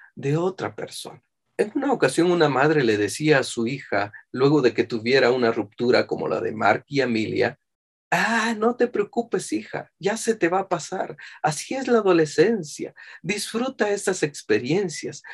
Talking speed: 170 wpm